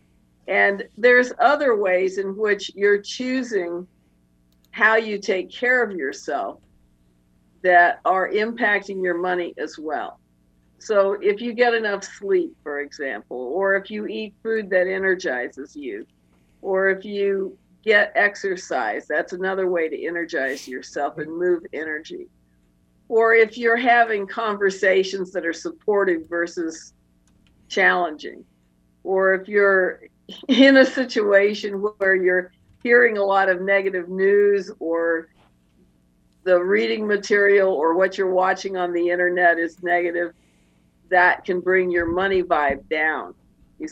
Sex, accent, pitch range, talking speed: female, American, 165-210 Hz, 130 wpm